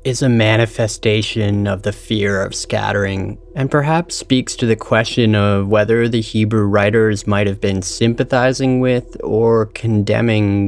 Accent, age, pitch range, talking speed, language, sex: American, 20-39, 100-115 Hz, 145 wpm, English, male